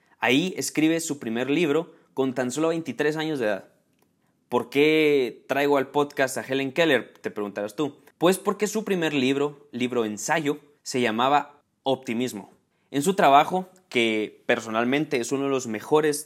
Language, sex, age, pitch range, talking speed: Spanish, male, 20-39, 130-170 Hz, 160 wpm